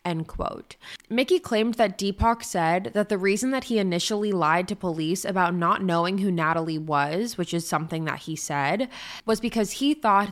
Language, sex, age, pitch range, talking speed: English, female, 20-39, 165-210 Hz, 185 wpm